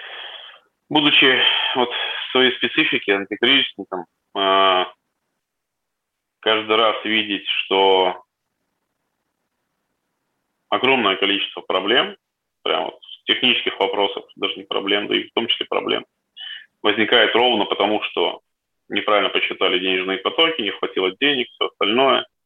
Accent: native